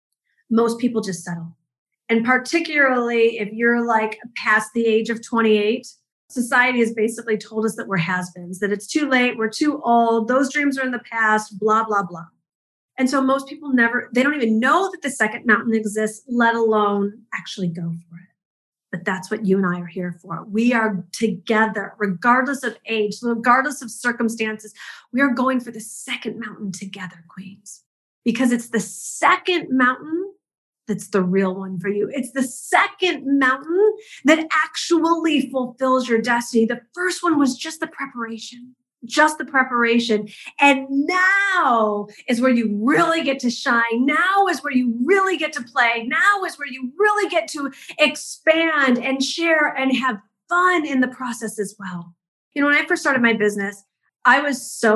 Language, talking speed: English, 175 wpm